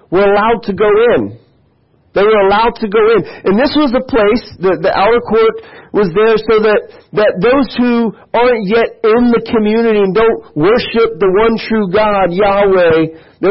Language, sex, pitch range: English, male, 170-230 Hz